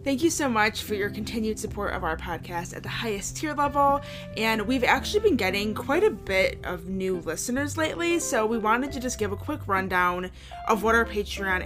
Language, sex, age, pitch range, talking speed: English, female, 20-39, 185-245 Hz, 210 wpm